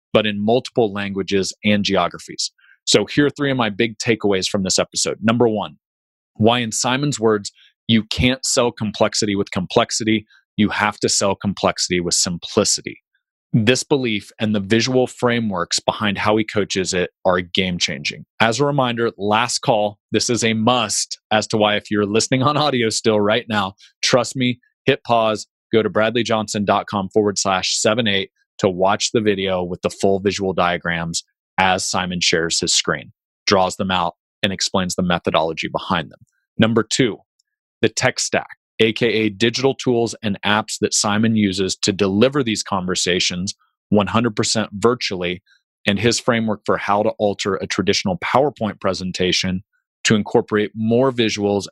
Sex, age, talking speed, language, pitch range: male, 30-49, 160 wpm, English, 95-115 Hz